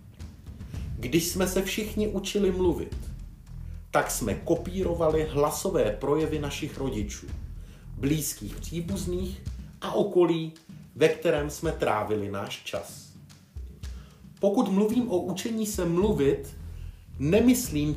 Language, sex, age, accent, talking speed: Czech, male, 40-59, native, 100 wpm